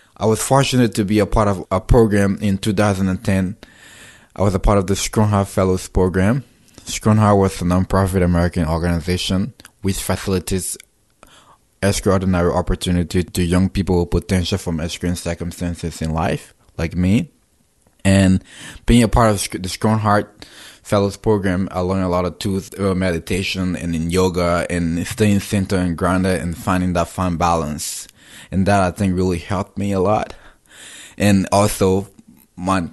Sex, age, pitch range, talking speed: male, 20-39, 90-105 Hz, 160 wpm